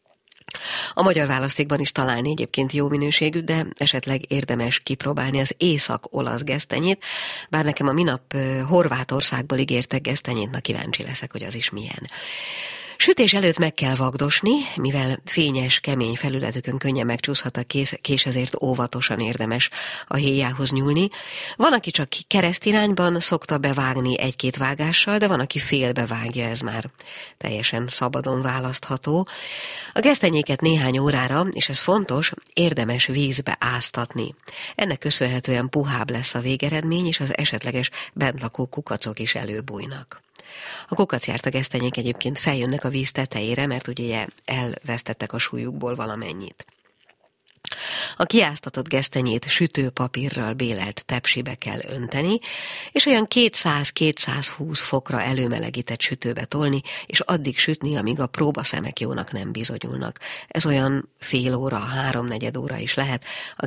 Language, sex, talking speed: Hungarian, female, 130 wpm